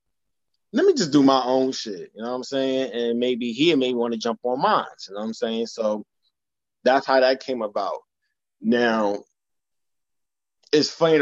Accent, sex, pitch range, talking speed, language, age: American, male, 105-135 Hz, 185 wpm, English, 20-39